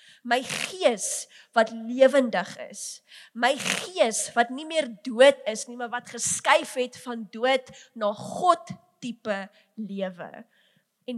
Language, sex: English, female